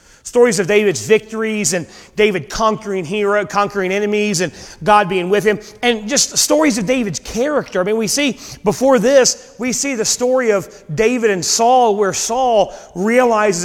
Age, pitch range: 30-49, 190-230 Hz